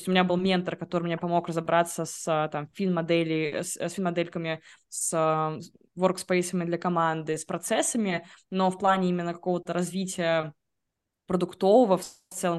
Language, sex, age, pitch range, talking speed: Russian, female, 20-39, 165-190 Hz, 145 wpm